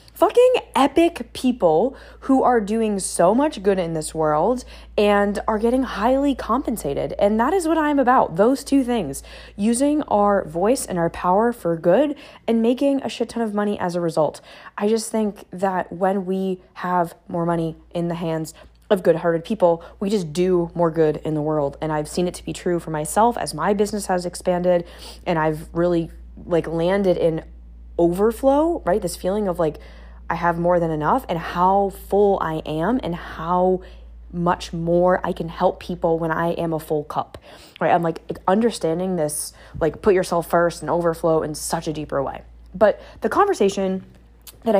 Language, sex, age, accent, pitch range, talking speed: English, female, 20-39, American, 165-215 Hz, 185 wpm